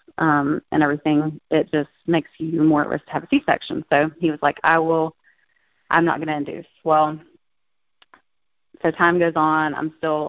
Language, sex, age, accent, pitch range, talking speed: English, female, 30-49, American, 150-165 Hz, 185 wpm